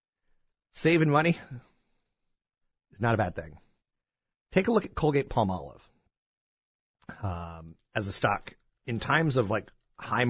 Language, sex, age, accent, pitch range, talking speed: English, male, 40-59, American, 95-135 Hz, 120 wpm